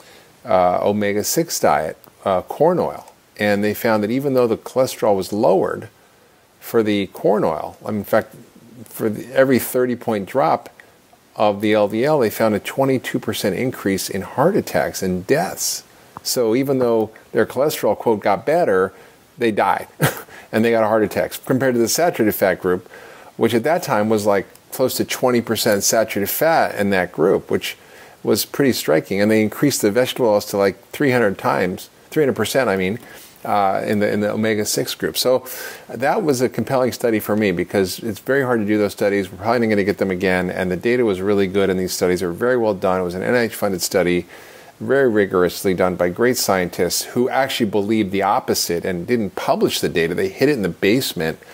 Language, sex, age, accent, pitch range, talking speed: English, male, 50-69, American, 95-120 Hz, 190 wpm